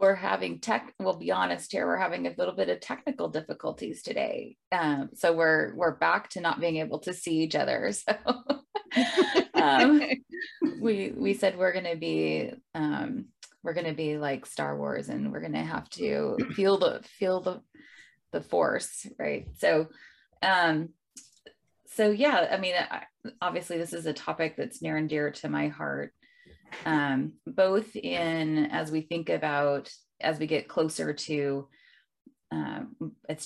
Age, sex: 20-39, female